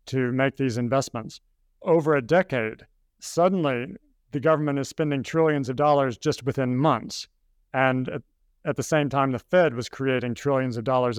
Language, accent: English, American